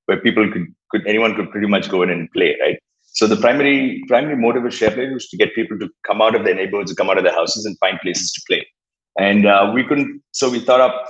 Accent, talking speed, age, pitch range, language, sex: Indian, 265 wpm, 30-49, 90-115 Hz, English, male